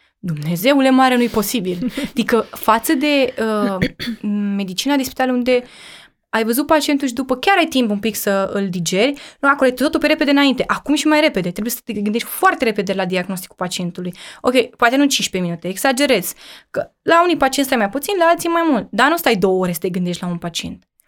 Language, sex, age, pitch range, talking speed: Romanian, female, 20-39, 195-255 Hz, 210 wpm